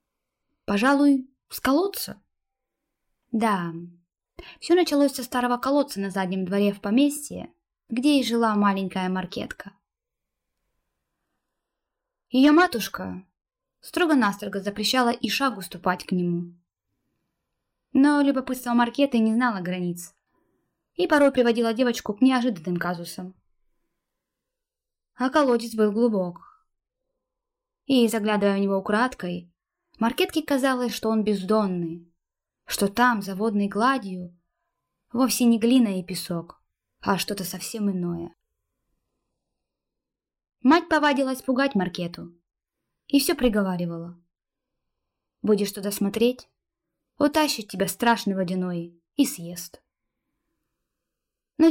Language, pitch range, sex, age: Russian, 185-275 Hz, female, 20-39